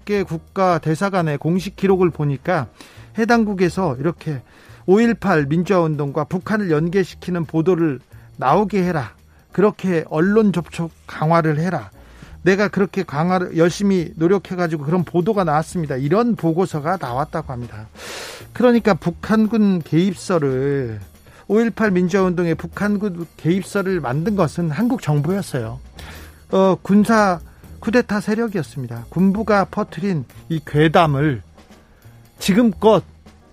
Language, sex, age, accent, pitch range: Korean, male, 40-59, native, 145-195 Hz